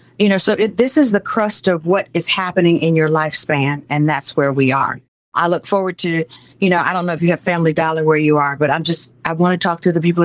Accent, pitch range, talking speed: American, 145-175 Hz, 270 wpm